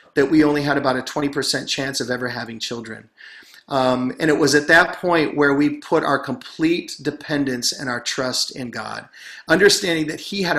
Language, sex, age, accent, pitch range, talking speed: English, male, 40-59, American, 135-160 Hz, 195 wpm